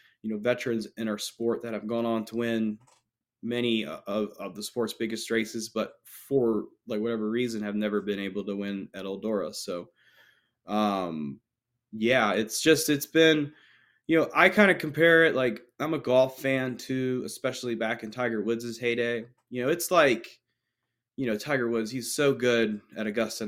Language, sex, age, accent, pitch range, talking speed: English, male, 20-39, American, 110-120 Hz, 180 wpm